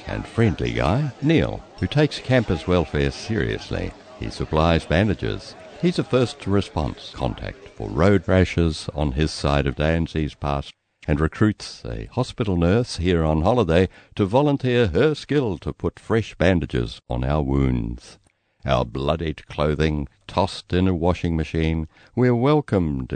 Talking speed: 145 wpm